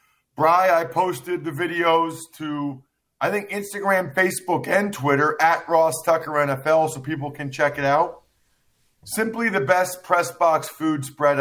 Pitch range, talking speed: 130-170 Hz, 155 wpm